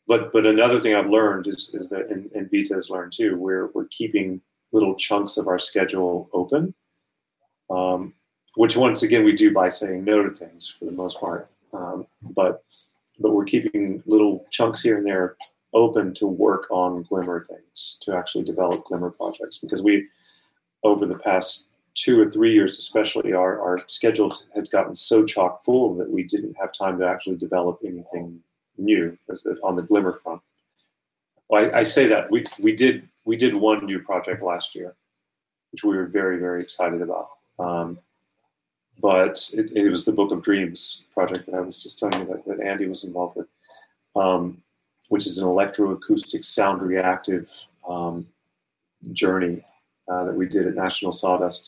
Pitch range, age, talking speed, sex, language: 90-115 Hz, 30-49, 175 wpm, male, English